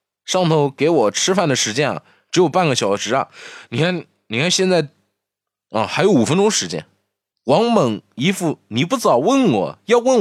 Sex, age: male, 20-39